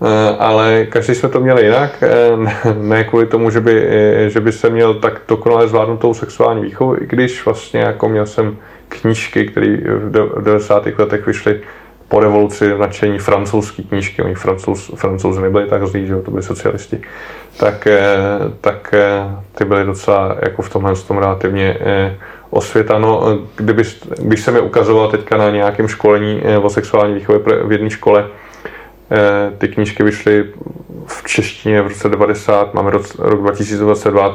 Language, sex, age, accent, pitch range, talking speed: Czech, male, 20-39, native, 100-115 Hz, 145 wpm